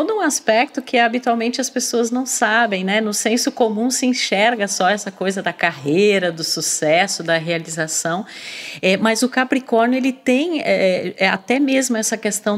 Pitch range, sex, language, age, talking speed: 180-230 Hz, female, Portuguese, 40-59, 165 wpm